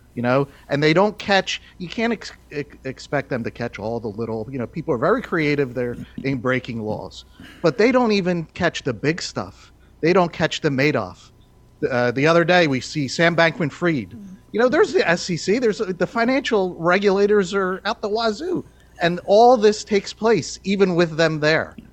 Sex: male